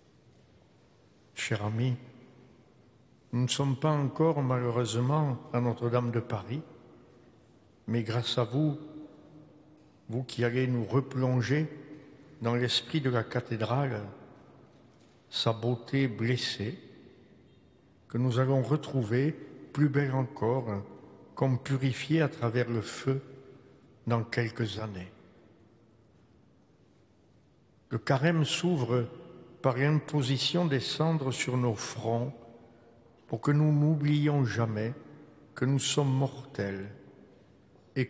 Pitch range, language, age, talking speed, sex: 115-145 Hz, French, 60-79, 100 wpm, male